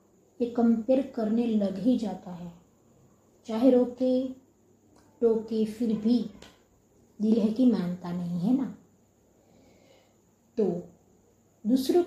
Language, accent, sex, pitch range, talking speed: Hindi, native, female, 185-235 Hz, 105 wpm